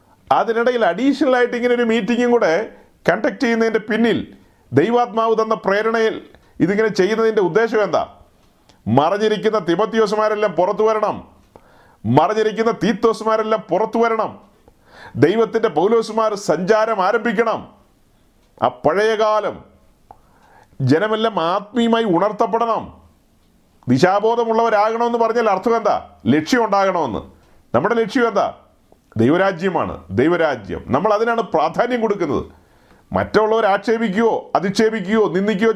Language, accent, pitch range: Malayalam, native, 195-230 Hz